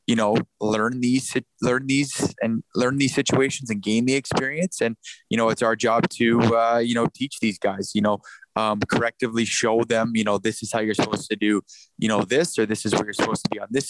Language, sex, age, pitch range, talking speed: English, male, 20-39, 110-120 Hz, 240 wpm